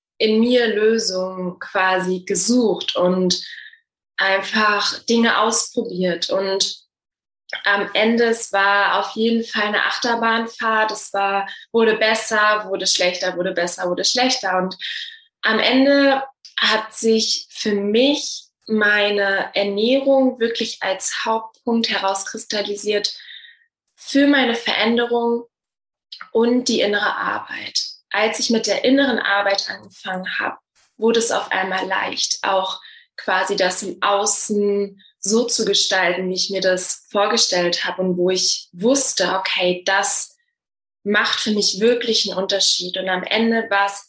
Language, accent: German, German